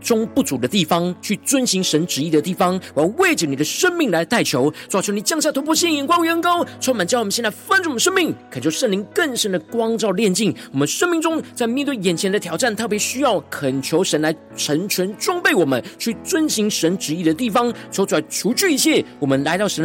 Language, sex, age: Chinese, male, 40-59